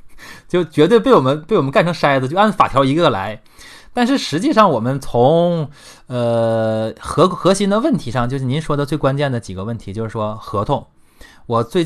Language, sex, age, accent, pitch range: Chinese, male, 20-39, native, 110-160 Hz